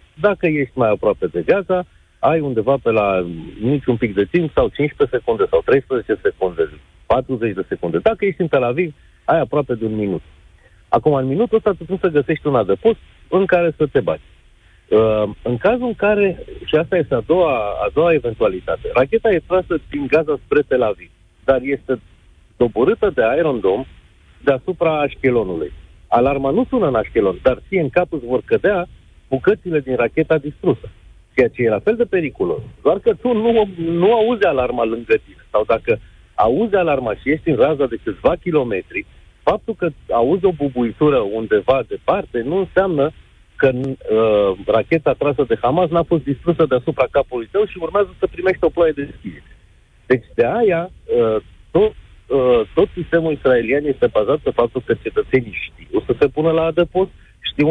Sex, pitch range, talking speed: male, 130-210 Hz, 170 wpm